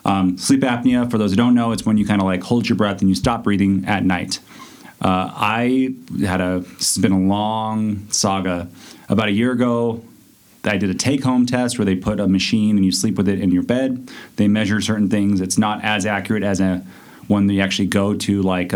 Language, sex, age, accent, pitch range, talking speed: English, male, 30-49, American, 95-115 Hz, 225 wpm